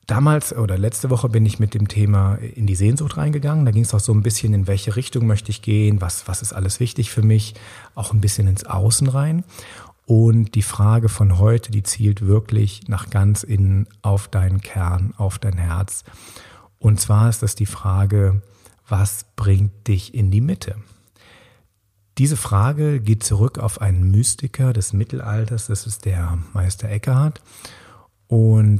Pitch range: 100-115 Hz